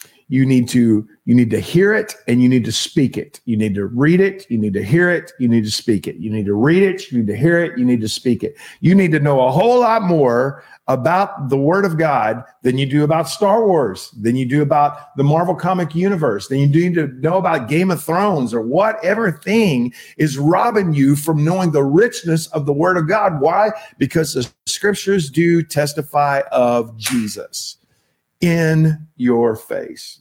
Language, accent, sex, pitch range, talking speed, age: English, American, male, 130-175 Hz, 205 wpm, 40-59